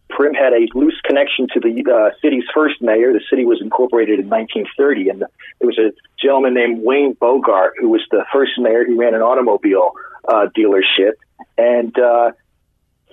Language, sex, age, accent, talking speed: English, male, 40-59, American, 175 wpm